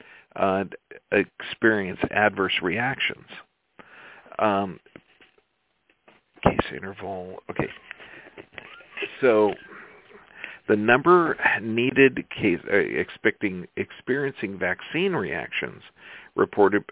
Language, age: English, 50-69